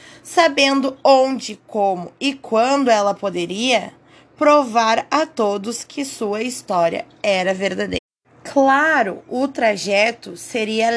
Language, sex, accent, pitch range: Portuguese, female, Brazilian, 215-285 Hz